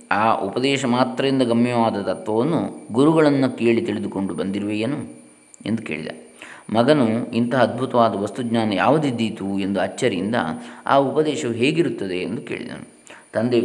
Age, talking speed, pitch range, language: 20-39, 105 wpm, 110-125 Hz, Kannada